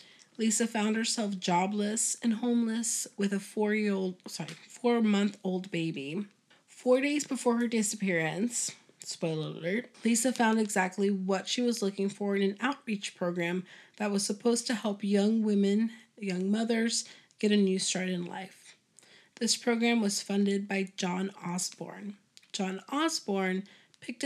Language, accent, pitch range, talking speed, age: English, American, 190-230 Hz, 140 wpm, 30-49